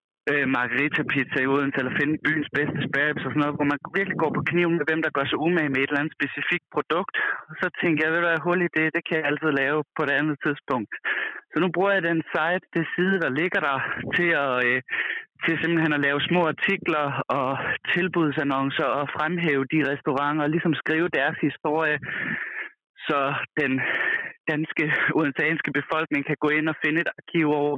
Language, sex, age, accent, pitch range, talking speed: Danish, male, 20-39, native, 140-165 Hz, 200 wpm